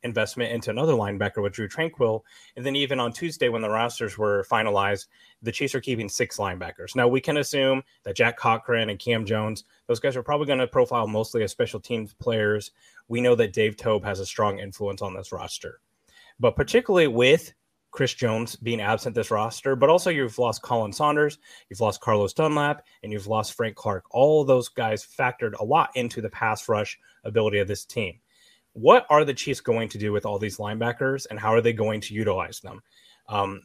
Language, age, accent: English, 30-49, American